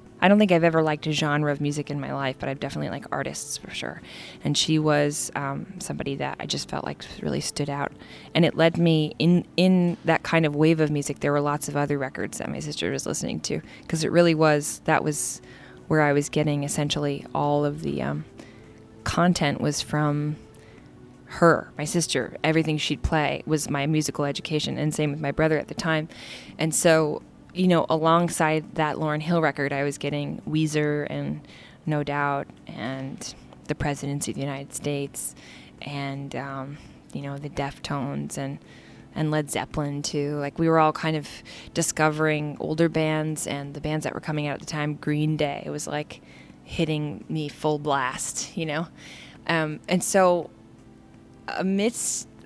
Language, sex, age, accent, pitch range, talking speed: English, female, 20-39, American, 140-155 Hz, 185 wpm